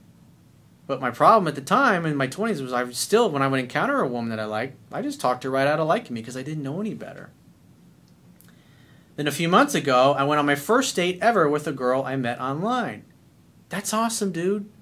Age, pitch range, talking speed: 40-59, 135-195 Hz, 235 wpm